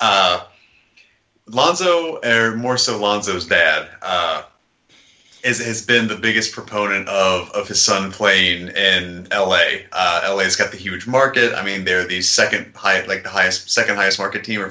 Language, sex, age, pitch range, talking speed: English, male, 30-49, 100-120 Hz, 170 wpm